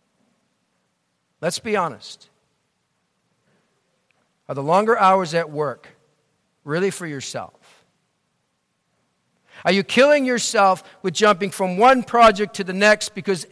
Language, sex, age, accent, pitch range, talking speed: English, male, 50-69, American, 160-225 Hz, 110 wpm